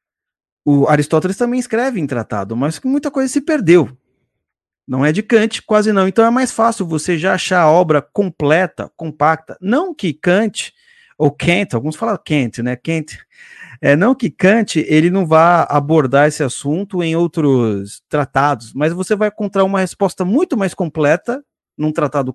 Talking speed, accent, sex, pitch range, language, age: 165 wpm, Brazilian, male, 145-200 Hz, Portuguese, 30-49